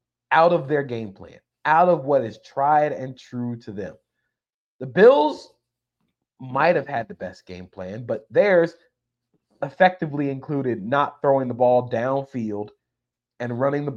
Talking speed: 150 wpm